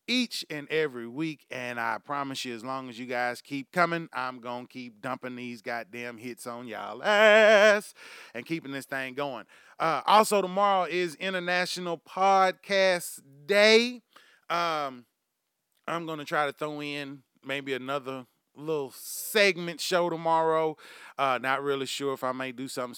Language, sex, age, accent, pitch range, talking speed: English, male, 30-49, American, 120-180 Hz, 160 wpm